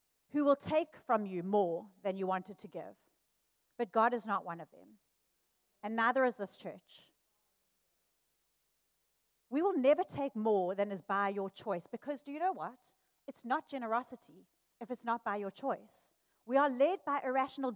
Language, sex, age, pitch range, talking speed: English, female, 30-49, 225-315 Hz, 175 wpm